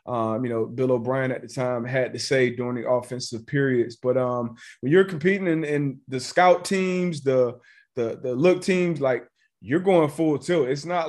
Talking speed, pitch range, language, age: 200 wpm, 125-150 Hz, English, 30-49